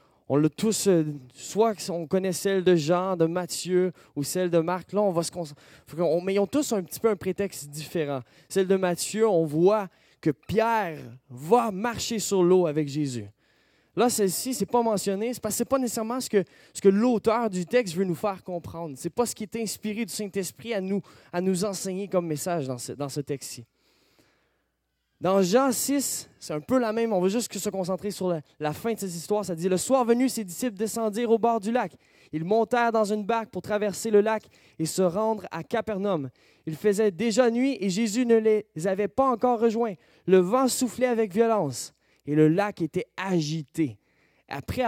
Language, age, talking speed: French, 20-39, 210 wpm